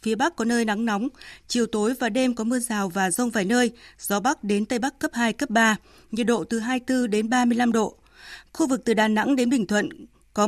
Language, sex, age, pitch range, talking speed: Vietnamese, female, 20-39, 215-255 Hz, 240 wpm